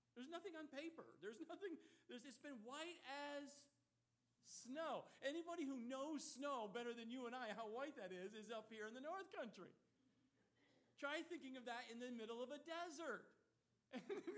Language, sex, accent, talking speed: English, male, American, 180 wpm